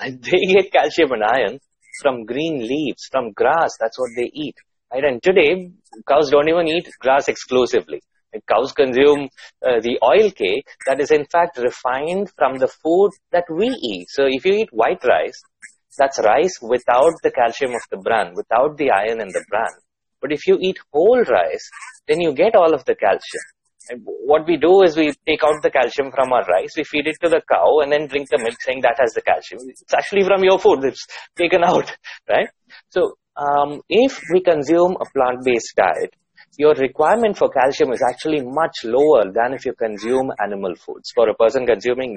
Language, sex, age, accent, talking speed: English, male, 30-49, Indian, 190 wpm